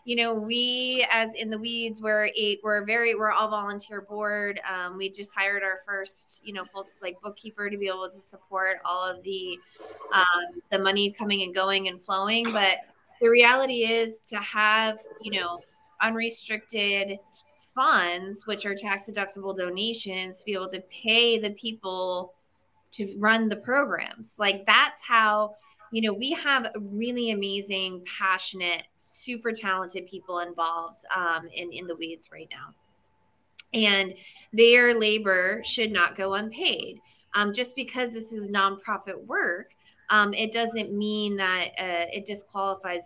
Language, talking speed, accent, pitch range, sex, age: English, 155 wpm, American, 190-225 Hz, female, 20-39